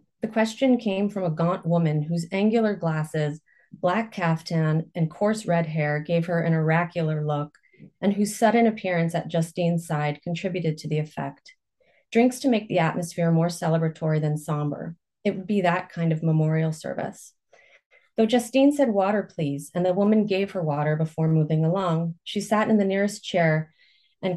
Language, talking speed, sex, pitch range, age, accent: English, 170 wpm, female, 160-200 Hz, 30-49, American